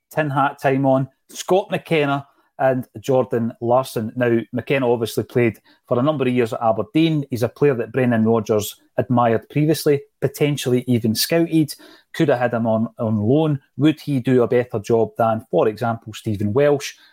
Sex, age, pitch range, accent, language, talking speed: male, 30-49, 120-155 Hz, British, English, 170 wpm